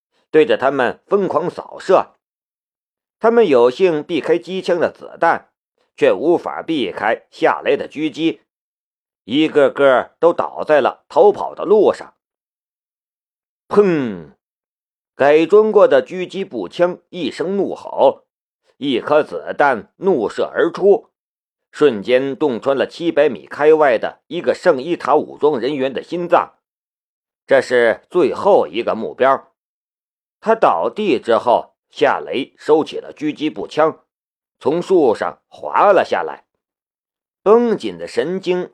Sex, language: male, Chinese